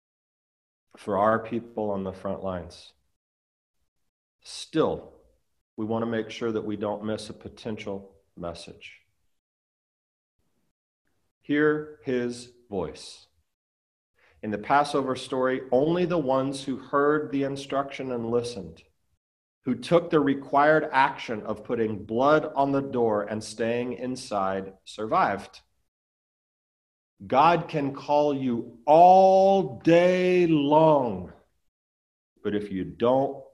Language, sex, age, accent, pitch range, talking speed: English, male, 40-59, American, 95-135 Hz, 110 wpm